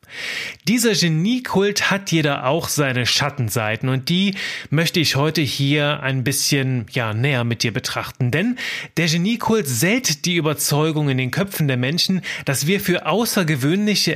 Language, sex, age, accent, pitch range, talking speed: German, male, 30-49, German, 135-190 Hz, 150 wpm